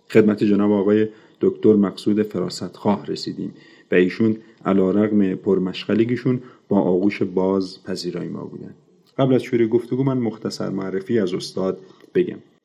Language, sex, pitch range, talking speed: Persian, male, 90-110 Hz, 130 wpm